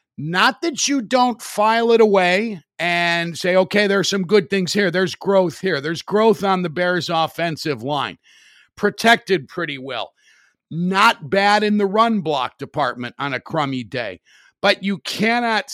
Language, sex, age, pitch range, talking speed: English, male, 50-69, 145-200 Hz, 165 wpm